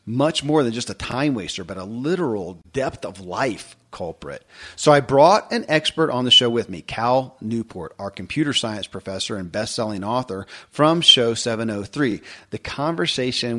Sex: male